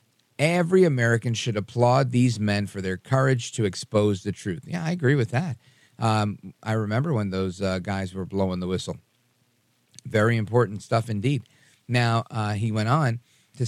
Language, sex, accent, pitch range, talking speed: English, male, American, 105-130 Hz, 170 wpm